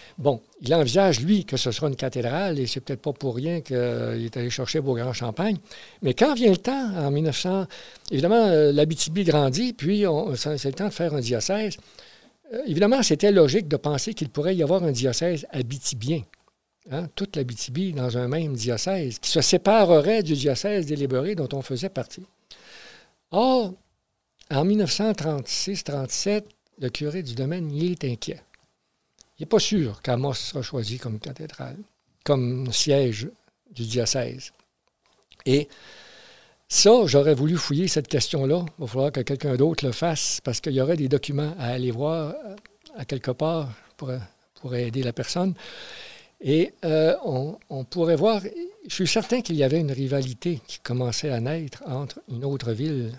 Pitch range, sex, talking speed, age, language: 130-180 Hz, male, 170 wpm, 60-79, French